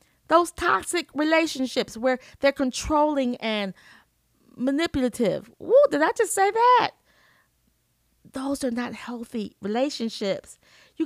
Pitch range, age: 235-310 Hz, 30-49